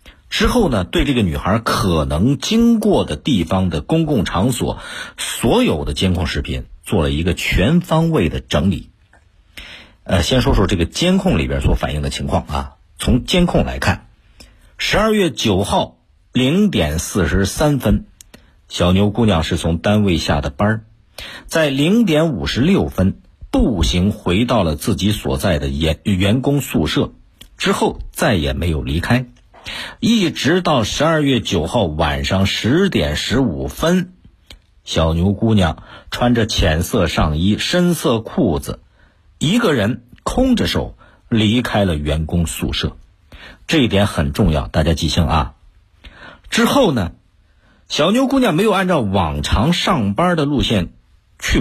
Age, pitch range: 50-69, 80-135 Hz